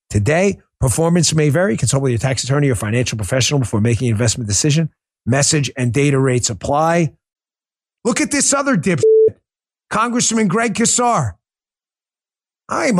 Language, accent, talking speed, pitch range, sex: English, American, 145 wpm, 160-235 Hz, male